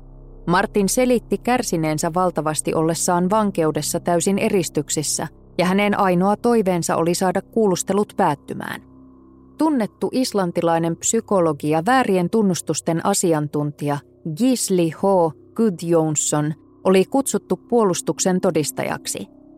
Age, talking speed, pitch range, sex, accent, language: 20-39, 90 wpm, 160-210 Hz, female, native, Finnish